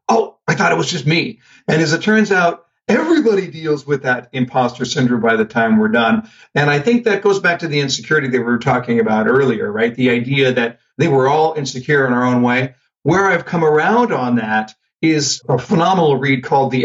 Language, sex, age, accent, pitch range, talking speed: English, male, 50-69, American, 125-155 Hz, 220 wpm